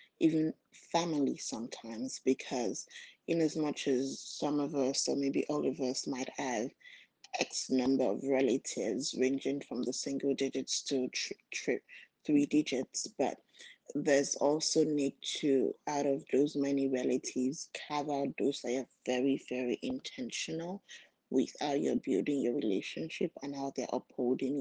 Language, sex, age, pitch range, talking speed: English, female, 20-39, 135-155 Hz, 145 wpm